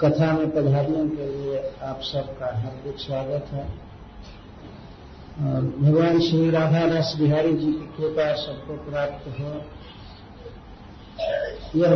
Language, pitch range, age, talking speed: Hindi, 140-175 Hz, 50-69, 115 wpm